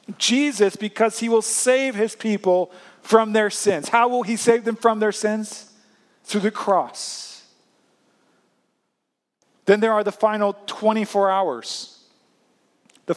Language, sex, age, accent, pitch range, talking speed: English, male, 40-59, American, 190-225 Hz, 130 wpm